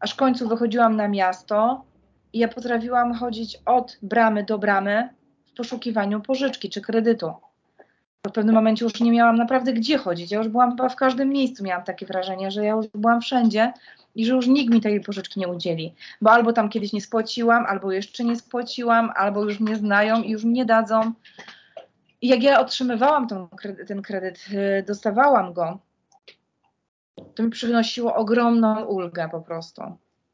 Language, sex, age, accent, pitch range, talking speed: Polish, female, 30-49, native, 190-235 Hz, 170 wpm